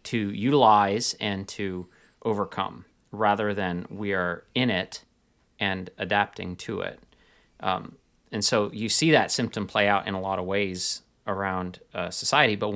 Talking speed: 155 wpm